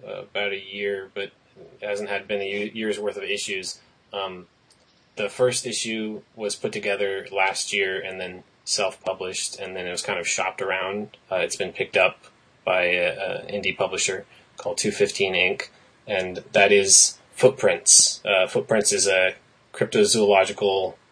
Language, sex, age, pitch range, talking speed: English, male, 20-39, 95-110 Hz, 155 wpm